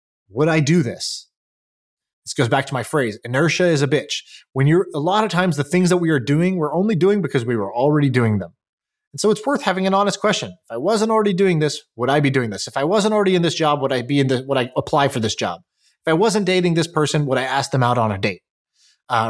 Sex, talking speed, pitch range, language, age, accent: male, 270 wpm, 130-170 Hz, English, 20-39, American